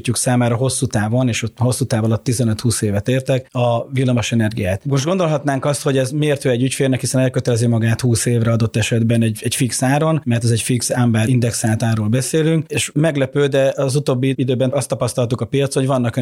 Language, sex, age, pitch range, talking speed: Hungarian, male, 30-49, 115-135 Hz, 190 wpm